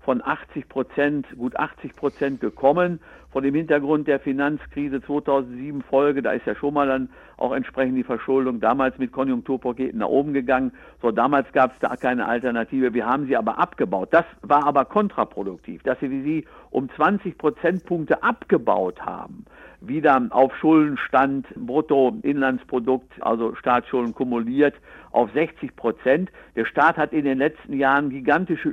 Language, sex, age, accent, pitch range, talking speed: German, male, 50-69, German, 125-150 Hz, 150 wpm